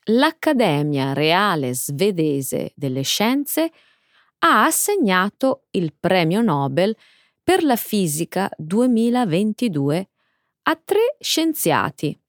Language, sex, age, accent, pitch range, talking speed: Italian, female, 30-49, native, 160-265 Hz, 85 wpm